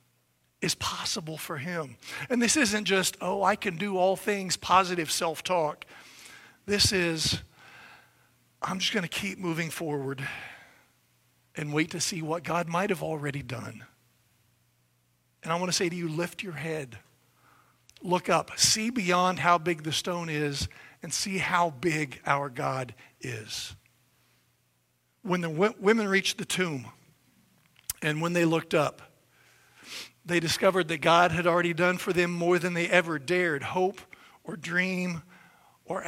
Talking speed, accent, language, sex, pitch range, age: 150 wpm, American, English, male, 140-185 Hz, 50-69